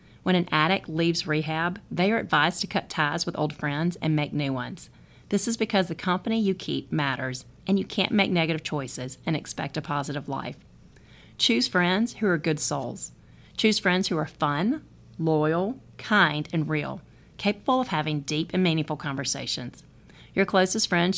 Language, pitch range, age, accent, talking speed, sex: English, 150-190 Hz, 40-59, American, 175 wpm, female